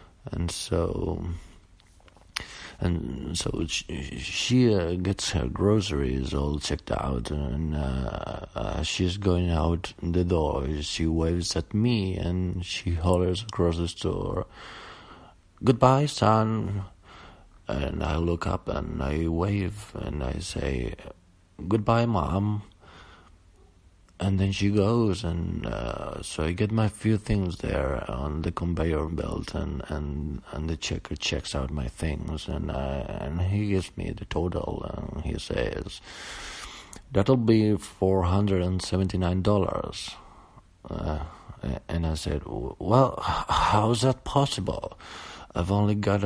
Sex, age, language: male, 50-69, Spanish